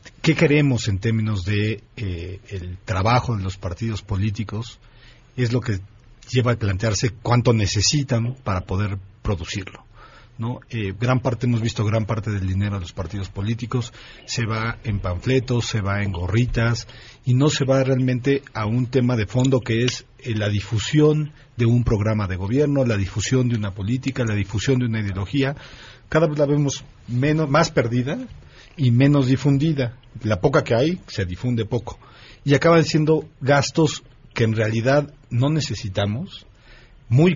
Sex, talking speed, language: male, 165 wpm, Spanish